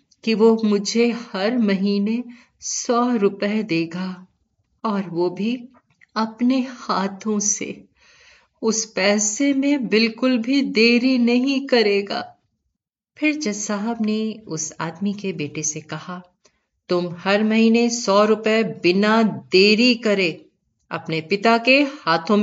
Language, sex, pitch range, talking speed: Hindi, female, 175-235 Hz, 120 wpm